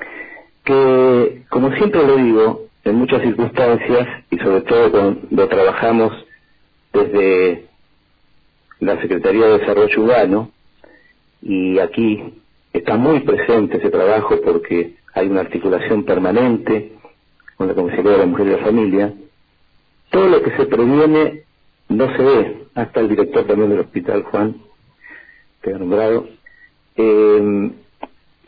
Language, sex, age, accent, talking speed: Spanish, male, 50-69, Argentinian, 125 wpm